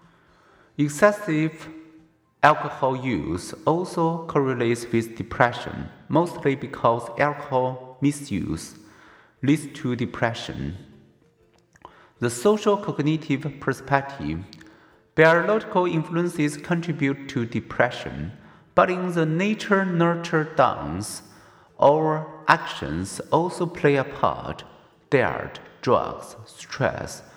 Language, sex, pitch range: Chinese, male, 130-165 Hz